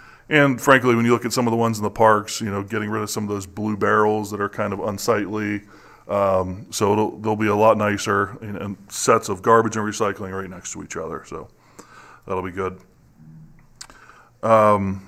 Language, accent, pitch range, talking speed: English, American, 100-115 Hz, 205 wpm